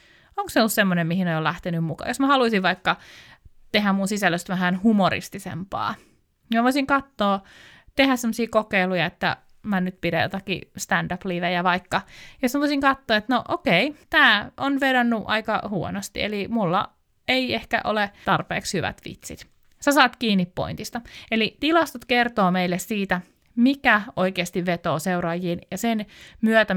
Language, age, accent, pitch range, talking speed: Finnish, 20-39, native, 170-230 Hz, 150 wpm